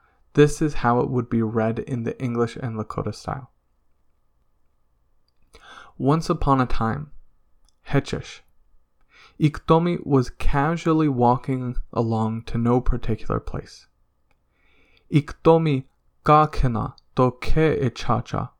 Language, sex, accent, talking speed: English, male, American, 100 wpm